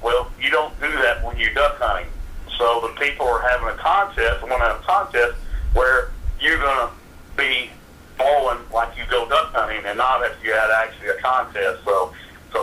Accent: American